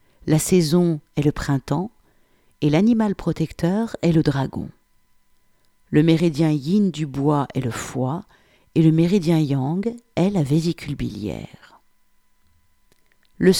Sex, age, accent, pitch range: female, 50-69, French, 135-180 Hz